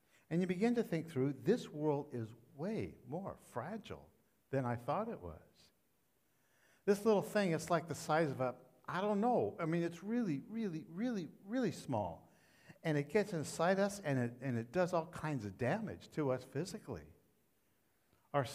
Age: 50-69